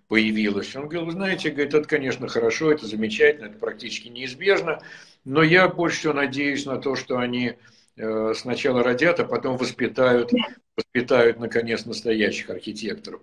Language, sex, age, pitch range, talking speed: Russian, male, 60-79, 105-140 Hz, 140 wpm